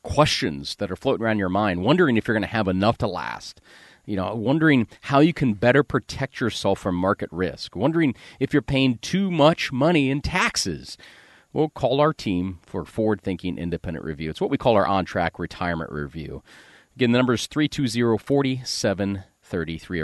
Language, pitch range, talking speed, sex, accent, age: English, 95-140 Hz, 180 wpm, male, American, 40-59